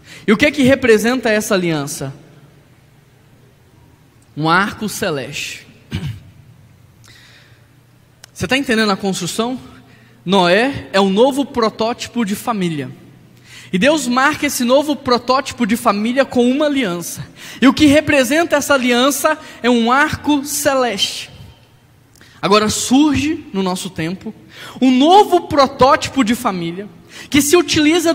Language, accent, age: Portuguese, Brazilian, 10-29